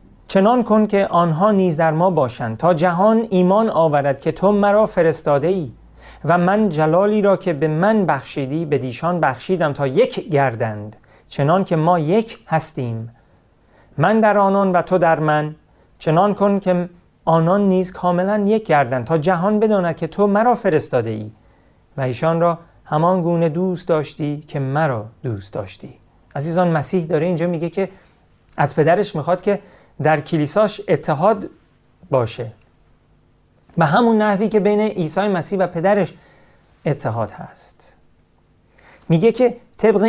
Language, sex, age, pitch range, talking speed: Persian, male, 40-59, 145-195 Hz, 150 wpm